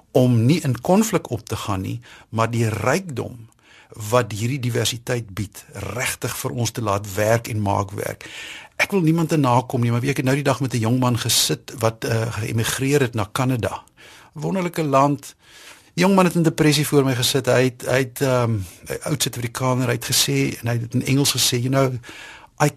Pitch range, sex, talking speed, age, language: 115-140 Hz, male, 205 wpm, 60-79, Dutch